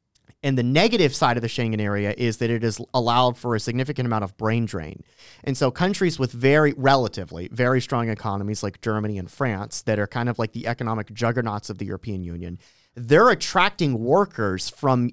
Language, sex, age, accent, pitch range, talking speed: English, male, 30-49, American, 115-150 Hz, 195 wpm